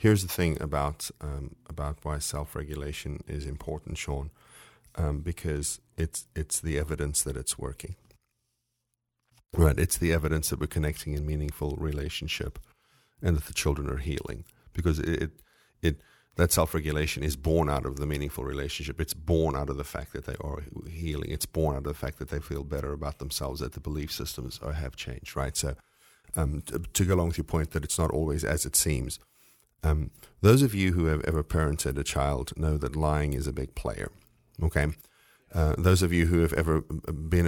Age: 40-59